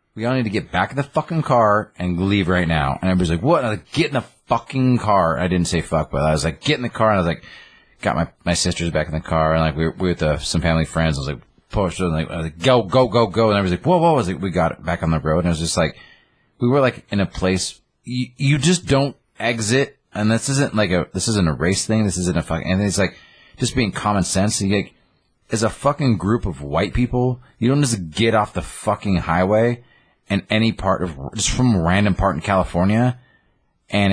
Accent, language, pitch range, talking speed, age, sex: American, English, 85-115 Hz, 270 wpm, 30-49, male